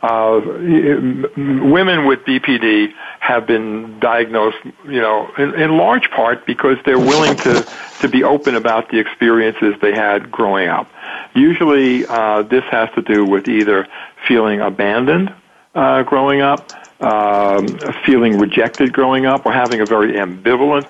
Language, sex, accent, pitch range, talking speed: English, male, American, 105-125 Hz, 145 wpm